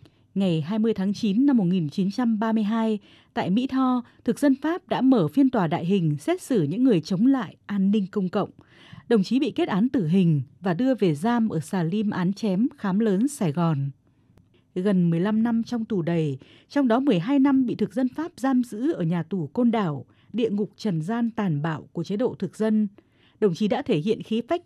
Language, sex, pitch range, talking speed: Vietnamese, female, 180-250 Hz, 210 wpm